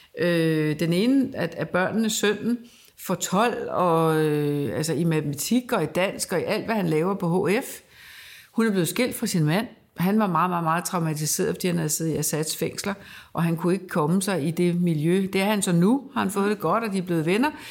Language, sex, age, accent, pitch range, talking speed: Danish, female, 60-79, native, 160-220 Hz, 220 wpm